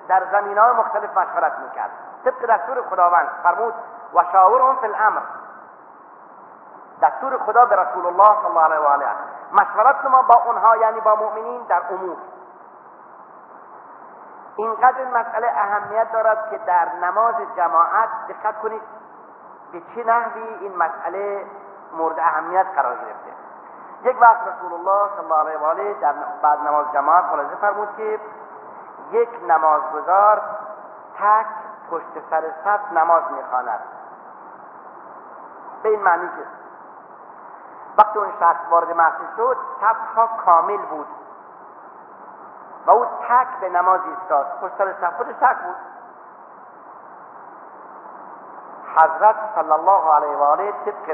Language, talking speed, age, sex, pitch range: Persian, 120 wpm, 40-59, male, 165-220 Hz